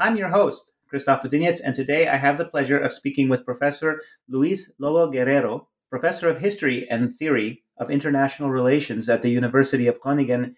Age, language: 30-49, English